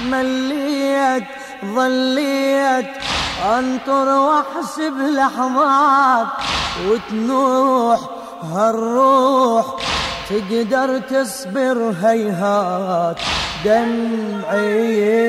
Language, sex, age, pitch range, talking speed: Arabic, female, 20-39, 210-265 Hz, 45 wpm